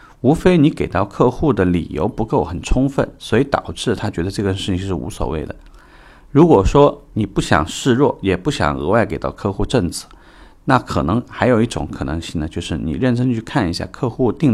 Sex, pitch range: male, 85-110 Hz